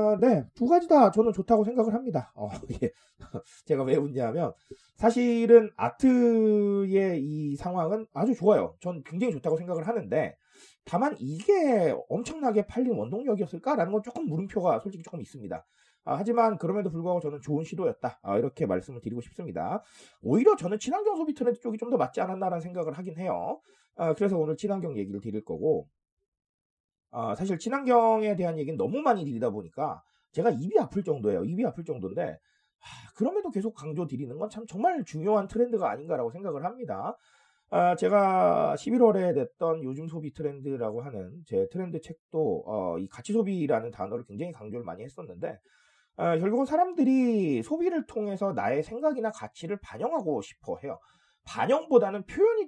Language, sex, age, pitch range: Korean, male, 30-49, 170-235 Hz